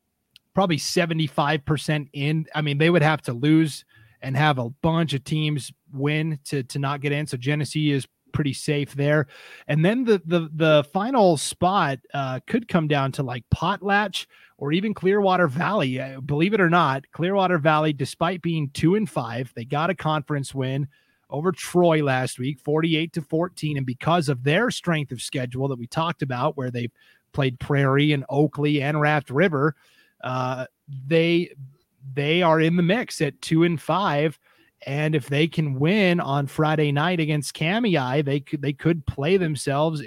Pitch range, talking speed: 140-165 Hz, 175 wpm